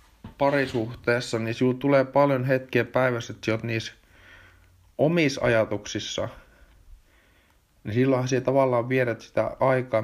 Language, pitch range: Finnish, 85-130 Hz